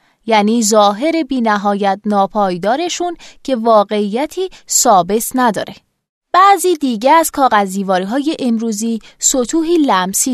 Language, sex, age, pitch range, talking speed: Persian, female, 20-39, 210-305 Hz, 100 wpm